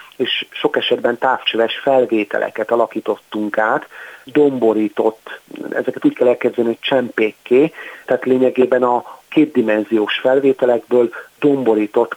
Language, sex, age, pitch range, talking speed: Hungarian, male, 40-59, 115-135 Hz, 100 wpm